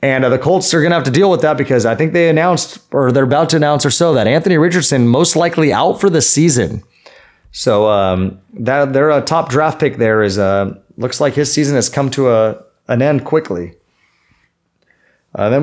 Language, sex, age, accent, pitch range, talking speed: English, male, 30-49, American, 125-165 Hz, 215 wpm